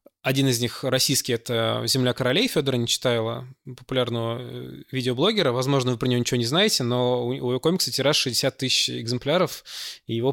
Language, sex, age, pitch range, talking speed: Russian, male, 20-39, 115-140 Hz, 170 wpm